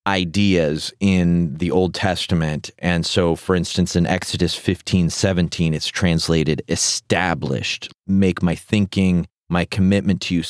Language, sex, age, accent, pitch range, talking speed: English, male, 30-49, American, 85-105 Hz, 130 wpm